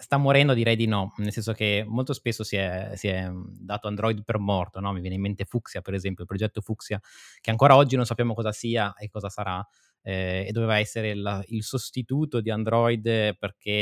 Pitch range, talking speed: 100-120 Hz, 200 wpm